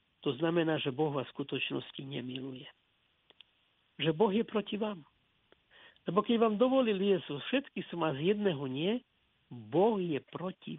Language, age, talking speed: Slovak, 60-79, 150 wpm